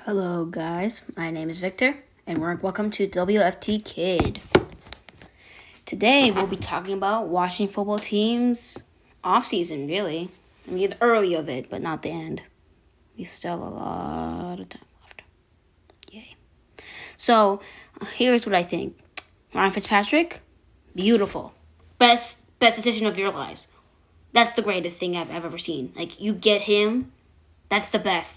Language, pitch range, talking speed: English, 165-210 Hz, 145 wpm